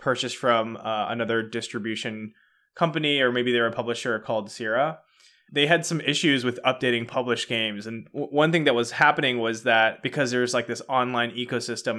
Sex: male